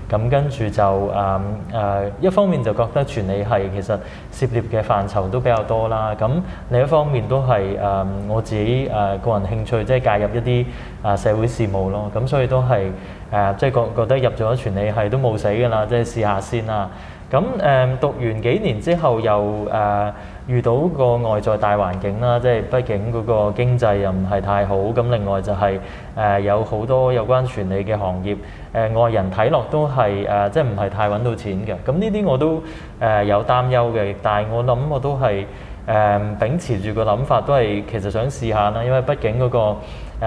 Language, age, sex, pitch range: Chinese, 20-39, male, 100-125 Hz